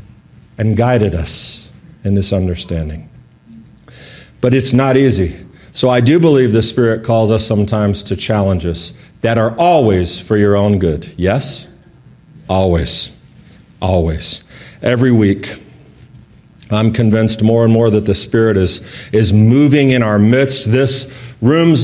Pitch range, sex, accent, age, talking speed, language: 105-135 Hz, male, American, 40-59, 135 wpm, English